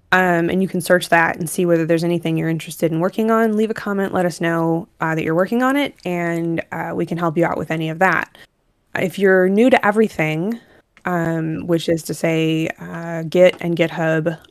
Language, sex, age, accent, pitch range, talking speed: English, female, 20-39, American, 165-185 Hz, 220 wpm